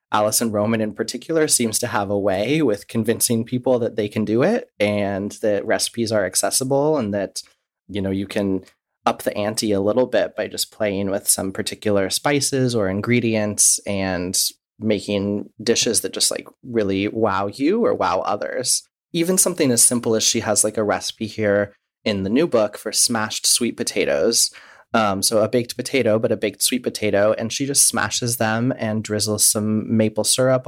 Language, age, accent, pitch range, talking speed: English, 30-49, American, 105-115 Hz, 185 wpm